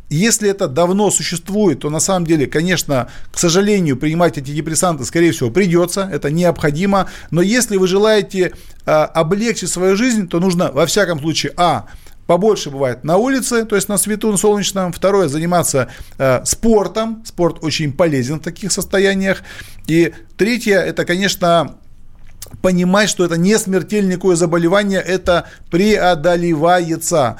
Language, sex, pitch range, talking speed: Russian, male, 160-200 Hz, 140 wpm